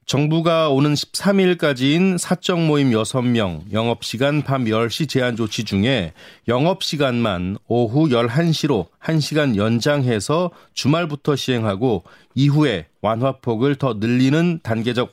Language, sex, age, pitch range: Korean, male, 30-49, 115-155 Hz